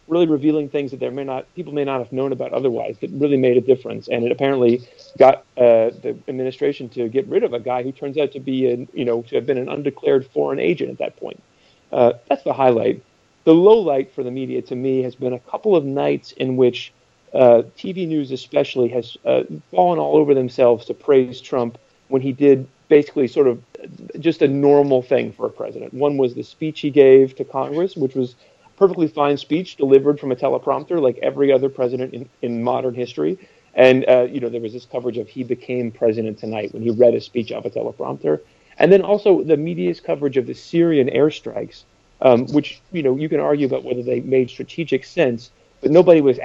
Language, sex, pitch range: English, male, 125-145 Hz